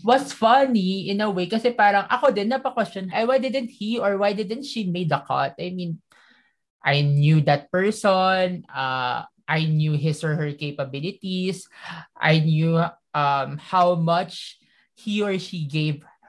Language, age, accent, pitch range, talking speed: English, 20-39, Filipino, 150-195 Hz, 160 wpm